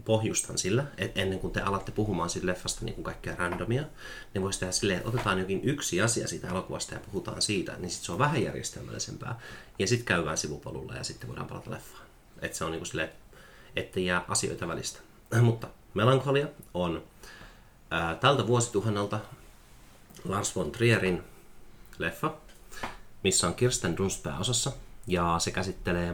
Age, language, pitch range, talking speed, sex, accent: 30-49, Finnish, 85-115 Hz, 160 wpm, male, native